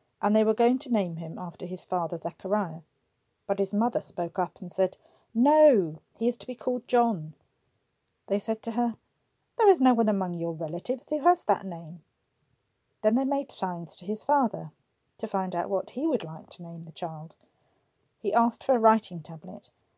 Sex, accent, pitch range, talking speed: female, British, 175-235 Hz, 190 wpm